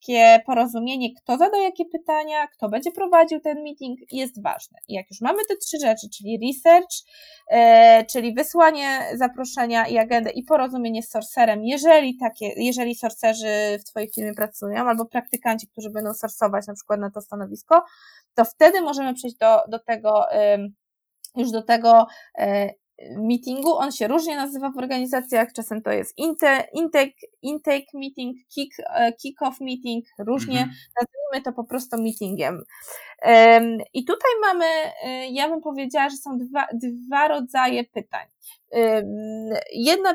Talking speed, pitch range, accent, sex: 145 wpm, 225-300 Hz, native, female